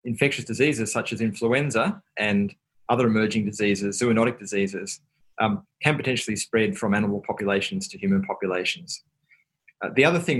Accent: Australian